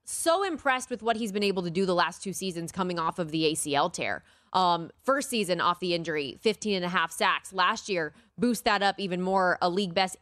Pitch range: 170-220 Hz